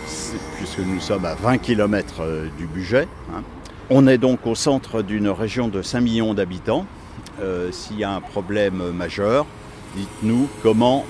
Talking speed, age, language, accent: 150 wpm, 60-79, French, French